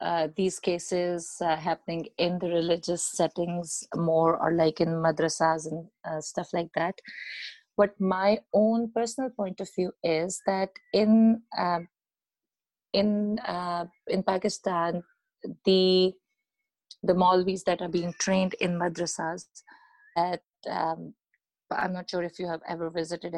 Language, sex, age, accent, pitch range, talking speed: English, female, 30-49, Indian, 170-205 Hz, 135 wpm